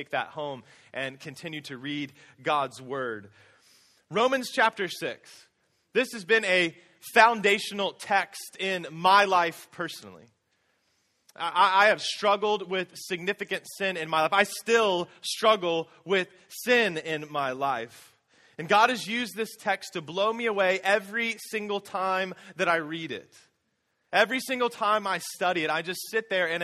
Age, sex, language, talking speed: 20-39, male, English, 150 wpm